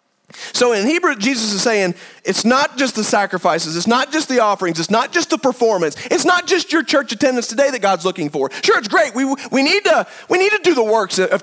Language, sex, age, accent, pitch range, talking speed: English, male, 40-59, American, 195-290 Hz, 225 wpm